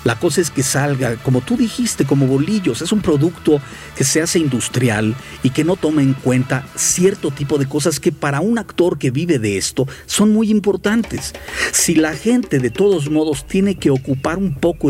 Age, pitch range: 50-69, 120-175 Hz